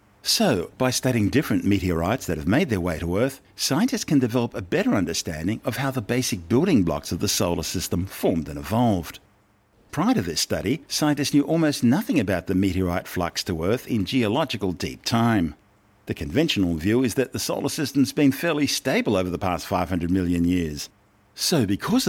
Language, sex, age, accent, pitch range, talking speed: English, male, 50-69, Australian, 90-125 Hz, 185 wpm